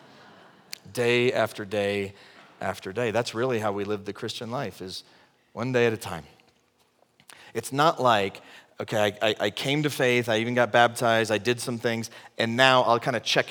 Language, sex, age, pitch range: English, male, 30-49, 110-135 Hz